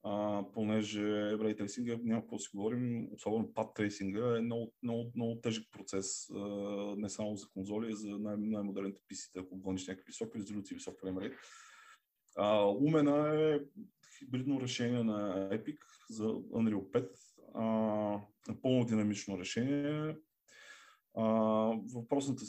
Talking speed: 120 wpm